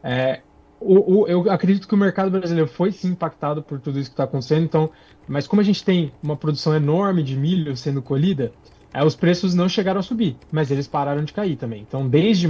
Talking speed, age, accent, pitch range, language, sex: 190 wpm, 20-39, Brazilian, 140-175 Hz, Portuguese, male